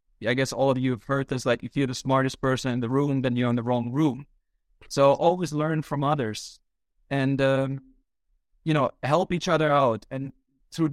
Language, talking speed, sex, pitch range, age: English, 210 wpm, male, 125-155 Hz, 30-49